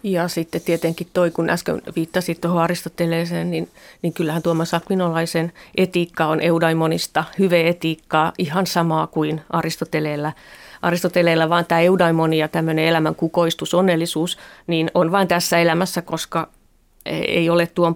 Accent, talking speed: native, 135 wpm